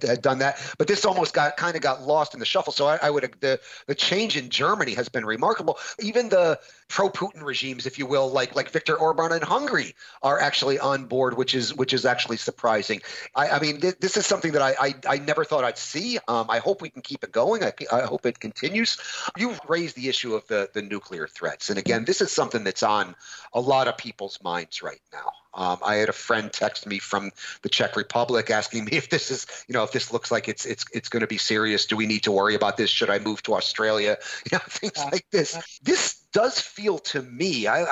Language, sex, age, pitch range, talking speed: English, male, 40-59, 115-165 Hz, 240 wpm